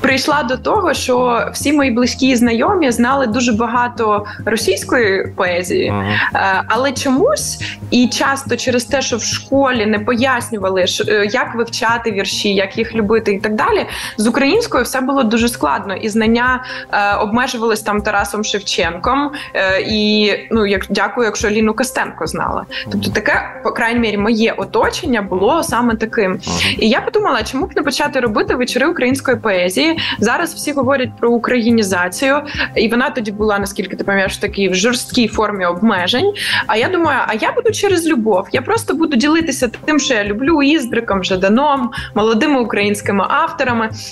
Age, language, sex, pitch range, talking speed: 20-39, Ukrainian, female, 215-275 Hz, 150 wpm